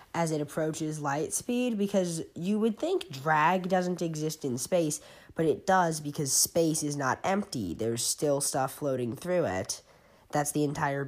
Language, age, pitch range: English, 10-29, 145-200 Hz